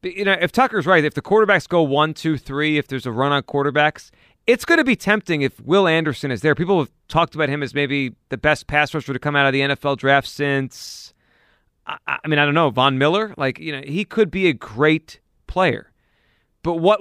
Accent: American